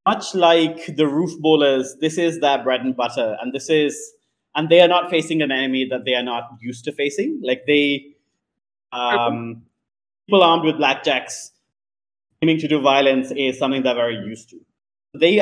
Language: English